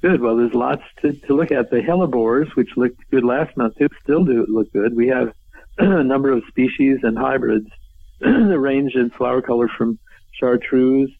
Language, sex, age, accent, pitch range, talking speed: English, male, 50-69, American, 110-135 Hz, 175 wpm